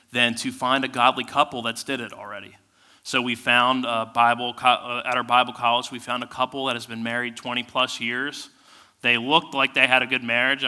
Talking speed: 215 wpm